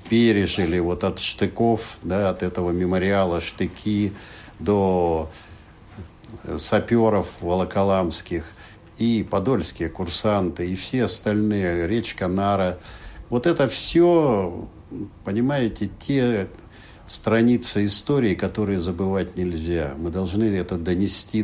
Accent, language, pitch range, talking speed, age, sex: native, Russian, 85-105 Hz, 95 wpm, 60-79, male